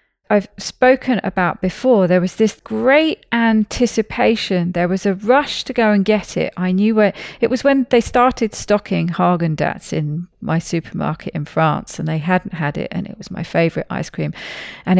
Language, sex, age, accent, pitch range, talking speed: English, female, 40-59, British, 175-225 Hz, 190 wpm